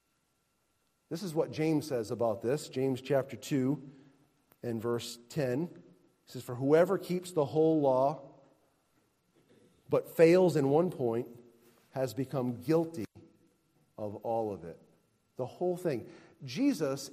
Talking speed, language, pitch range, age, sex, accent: 130 wpm, English, 130-170 Hz, 40-59, male, American